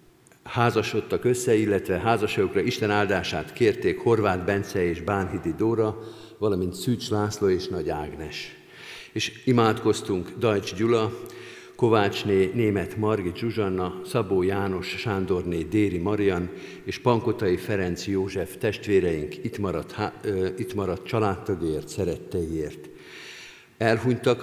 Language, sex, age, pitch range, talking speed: Hungarian, male, 50-69, 95-115 Hz, 105 wpm